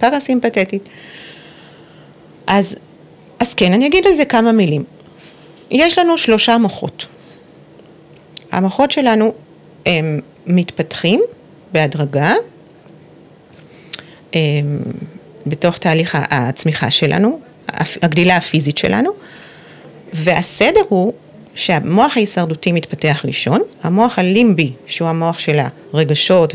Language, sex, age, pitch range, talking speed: Hebrew, female, 40-59, 155-220 Hz, 85 wpm